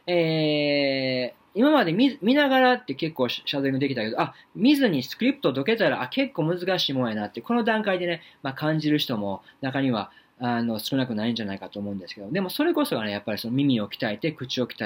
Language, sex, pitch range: Japanese, male, 120-195 Hz